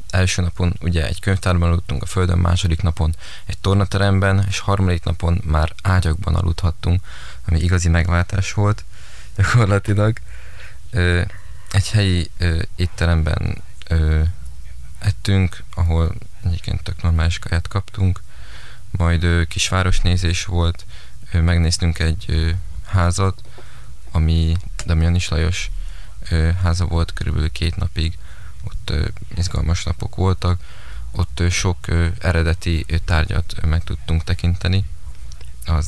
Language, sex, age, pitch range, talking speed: Hungarian, male, 20-39, 85-95 Hz, 95 wpm